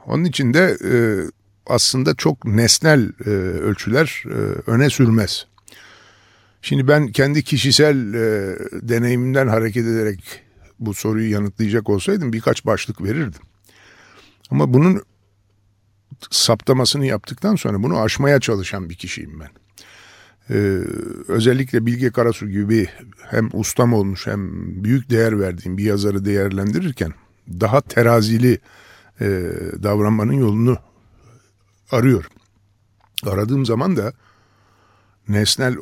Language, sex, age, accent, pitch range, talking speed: Turkish, male, 50-69, native, 100-125 Hz, 95 wpm